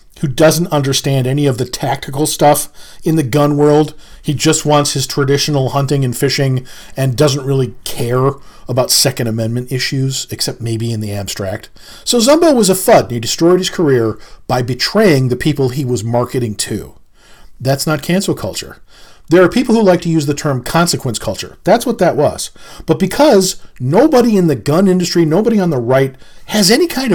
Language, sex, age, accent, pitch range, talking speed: English, male, 40-59, American, 130-190 Hz, 185 wpm